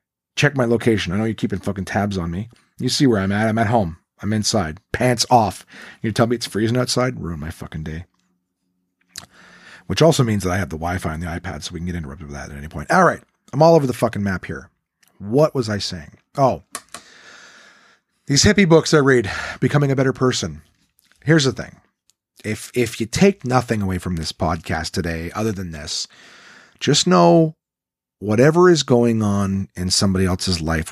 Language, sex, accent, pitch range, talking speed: English, male, American, 90-125 Hz, 200 wpm